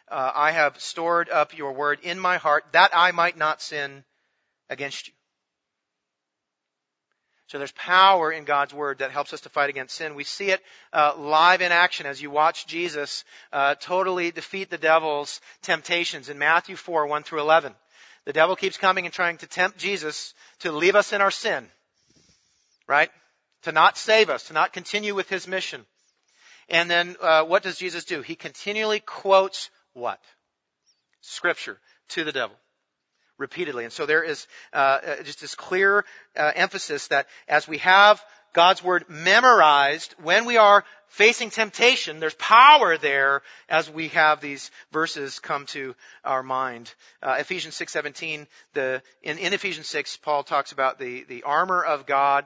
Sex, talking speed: male, 165 wpm